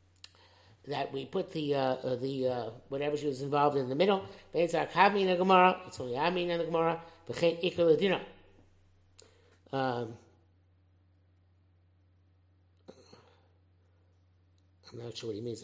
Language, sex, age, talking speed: English, male, 60-79, 110 wpm